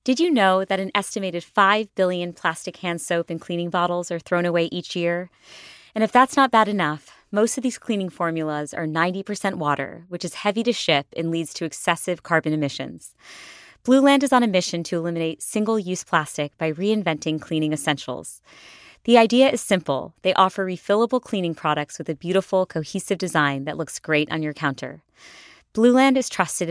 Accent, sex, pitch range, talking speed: American, female, 155-200 Hz, 180 wpm